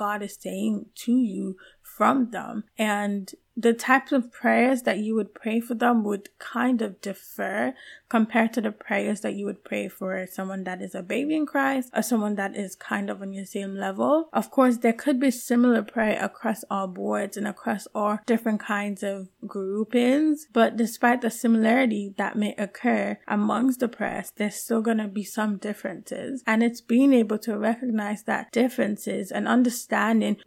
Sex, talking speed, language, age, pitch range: female, 180 wpm, English, 20-39, 205-235 Hz